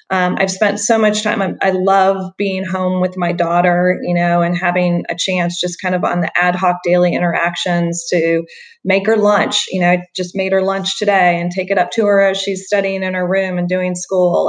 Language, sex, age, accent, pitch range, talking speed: English, female, 20-39, American, 180-210 Hz, 225 wpm